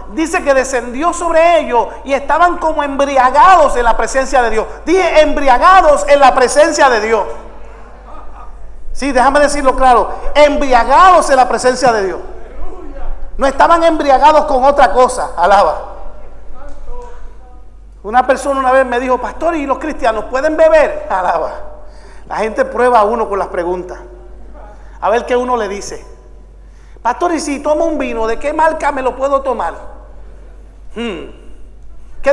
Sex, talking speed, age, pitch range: male, 150 wpm, 50-69, 255-325 Hz